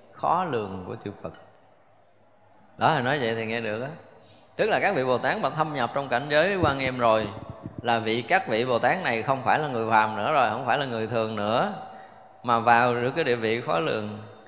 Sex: male